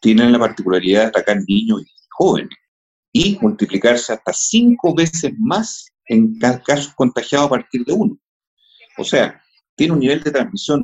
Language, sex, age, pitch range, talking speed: Spanish, male, 50-69, 120-185 Hz, 155 wpm